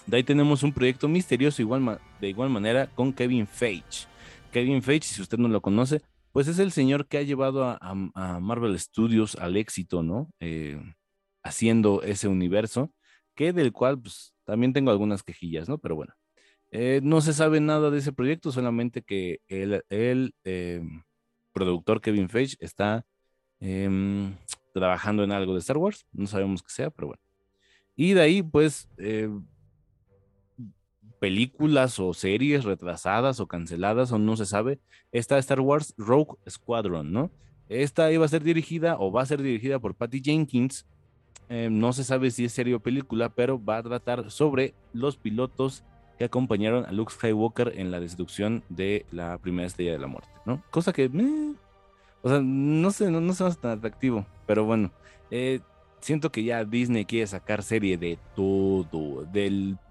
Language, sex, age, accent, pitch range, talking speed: Spanish, male, 30-49, Mexican, 100-135 Hz, 170 wpm